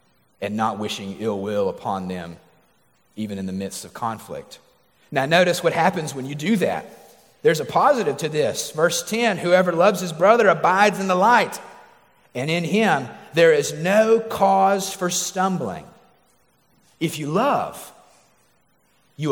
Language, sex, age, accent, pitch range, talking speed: English, male, 40-59, American, 140-190 Hz, 150 wpm